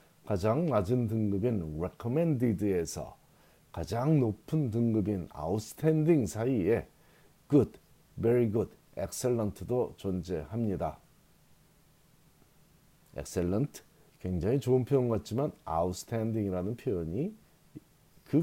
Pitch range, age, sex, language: 100-140 Hz, 40-59, male, Korean